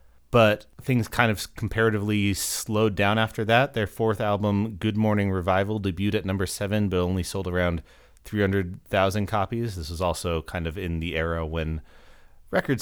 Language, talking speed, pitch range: English, 165 wpm, 90-110 Hz